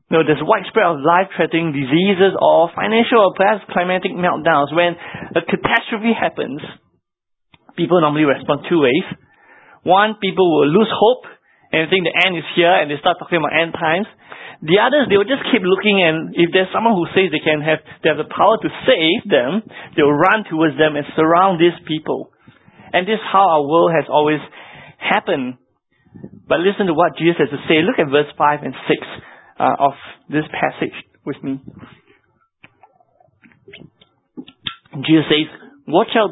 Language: English